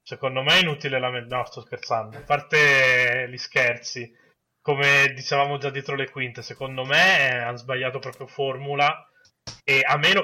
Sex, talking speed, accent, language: male, 165 wpm, native, Italian